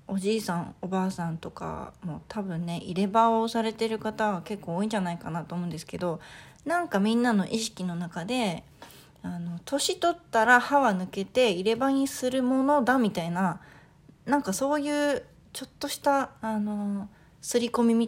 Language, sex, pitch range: Japanese, female, 175-235 Hz